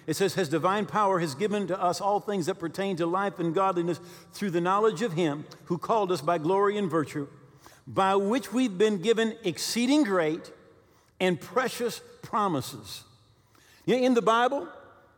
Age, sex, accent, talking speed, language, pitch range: 50-69, male, American, 165 wpm, English, 165-230 Hz